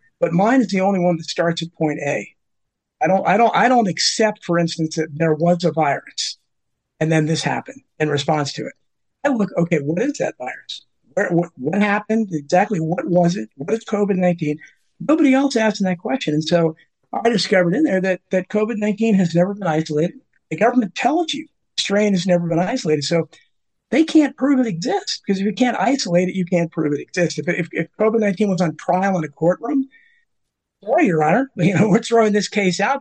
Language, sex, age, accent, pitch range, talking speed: English, male, 50-69, American, 165-220 Hz, 205 wpm